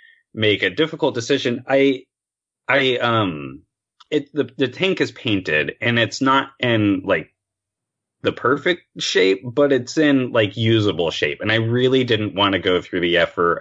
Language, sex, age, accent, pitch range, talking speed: English, male, 30-49, American, 95-130 Hz, 165 wpm